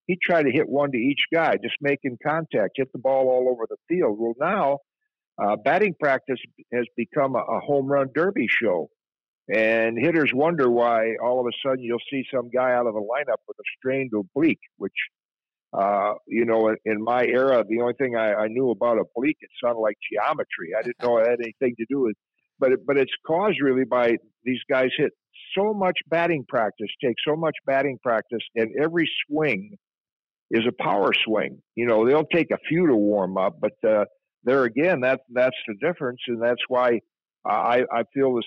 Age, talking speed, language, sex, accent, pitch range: 50-69, 200 wpm, English, male, American, 115-145 Hz